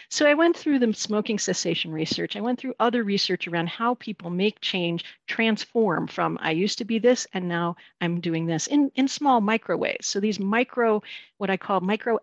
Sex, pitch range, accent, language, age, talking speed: female, 180-240 Hz, American, English, 50-69, 205 wpm